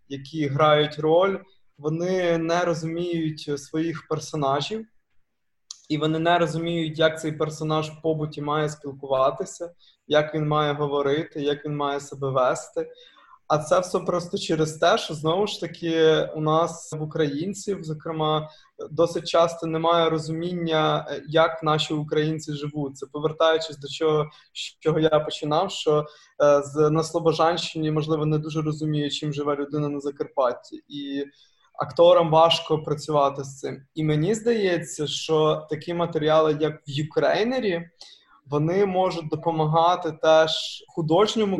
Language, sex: Ukrainian, male